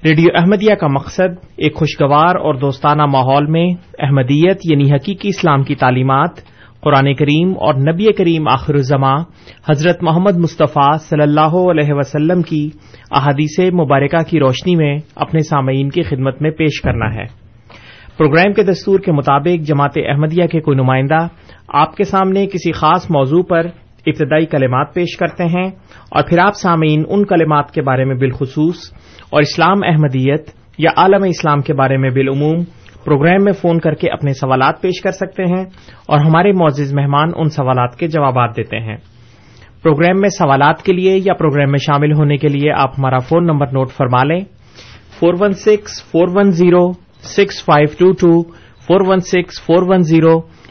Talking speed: 150 wpm